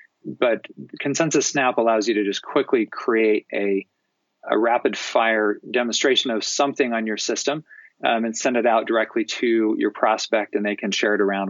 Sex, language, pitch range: male, English, 105-135 Hz